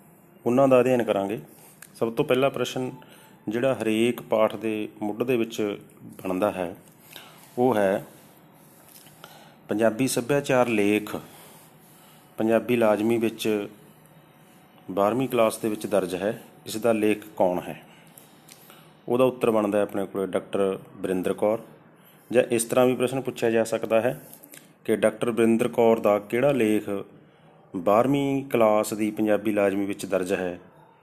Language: Punjabi